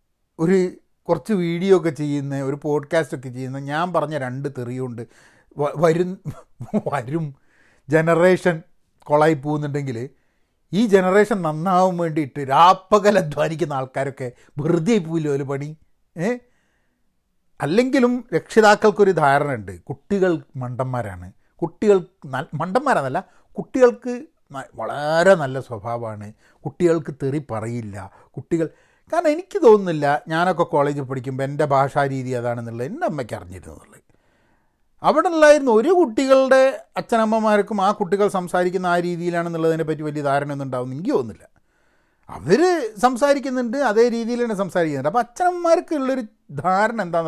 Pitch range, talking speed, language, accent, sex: 140-210 Hz, 105 wpm, Malayalam, native, male